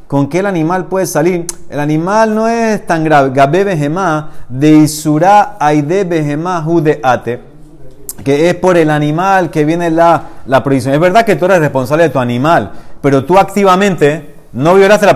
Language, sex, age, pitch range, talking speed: Spanish, male, 30-49, 140-180 Hz, 180 wpm